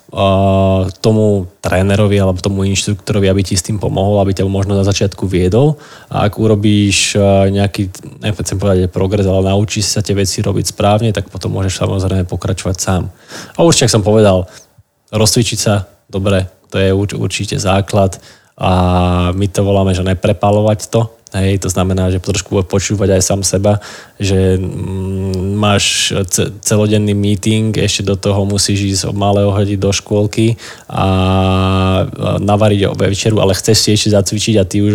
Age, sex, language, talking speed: 20-39, male, Slovak, 155 wpm